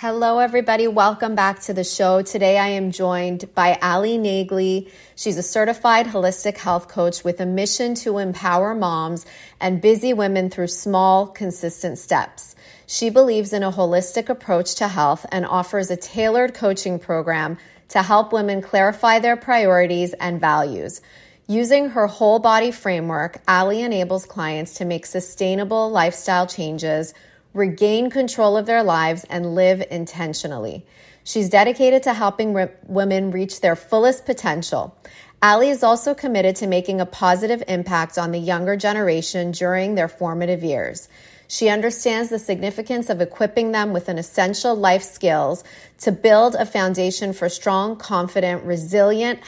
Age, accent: 30-49, American